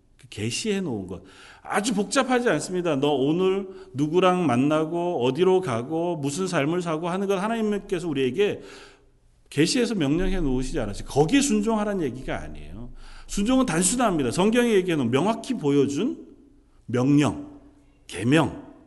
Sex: male